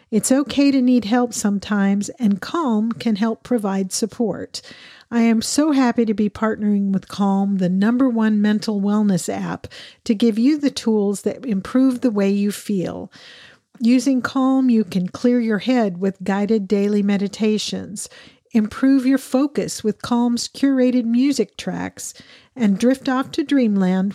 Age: 50-69